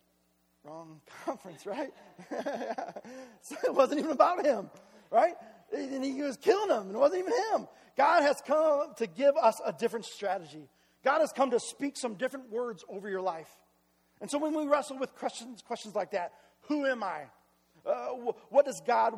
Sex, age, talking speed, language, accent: male, 40-59, 180 wpm, English, American